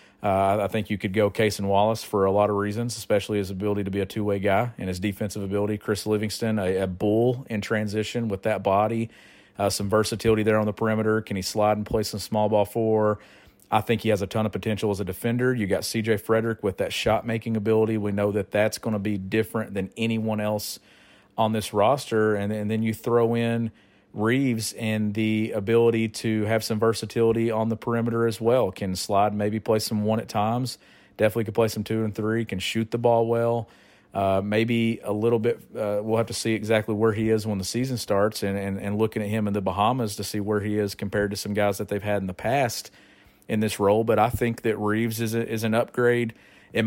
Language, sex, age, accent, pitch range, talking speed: English, male, 40-59, American, 105-115 Hz, 230 wpm